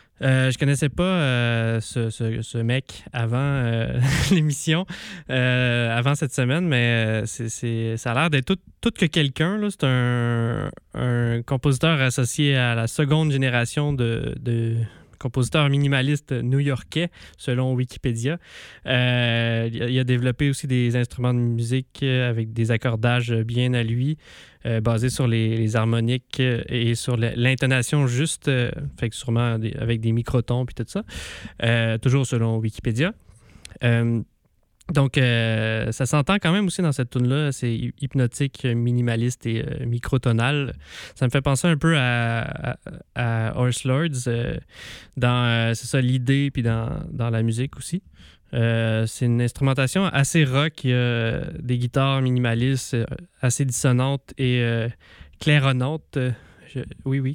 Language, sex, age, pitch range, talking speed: French, male, 20-39, 115-140 Hz, 150 wpm